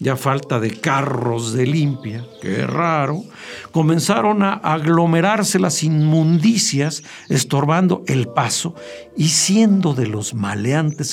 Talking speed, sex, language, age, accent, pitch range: 115 wpm, male, Spanish, 50-69, Mexican, 125-175 Hz